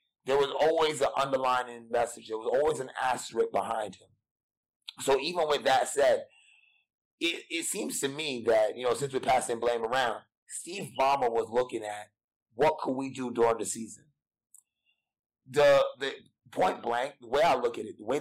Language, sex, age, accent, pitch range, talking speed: English, male, 30-49, American, 125-160 Hz, 180 wpm